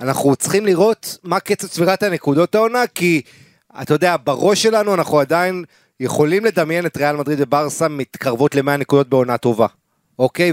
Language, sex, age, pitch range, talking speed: Hebrew, male, 30-49, 135-175 Hz, 155 wpm